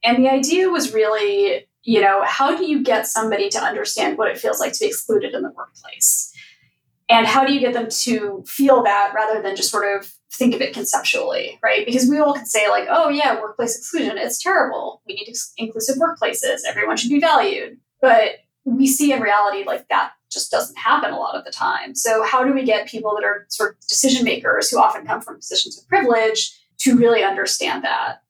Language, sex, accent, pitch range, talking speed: English, female, American, 220-300 Hz, 215 wpm